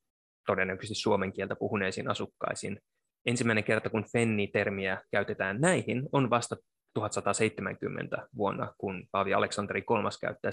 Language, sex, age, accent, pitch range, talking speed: Finnish, male, 20-39, native, 105-140 Hz, 115 wpm